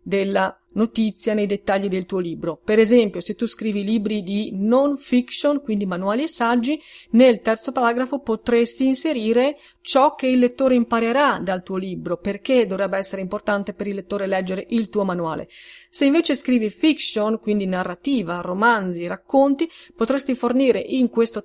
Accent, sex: native, female